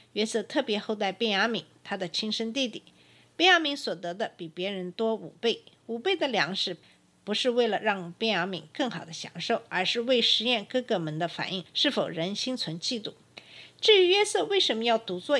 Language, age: Chinese, 50-69